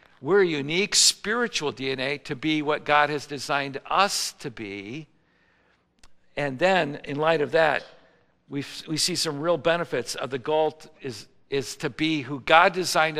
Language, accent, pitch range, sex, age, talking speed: English, American, 115-155 Hz, male, 60-79, 165 wpm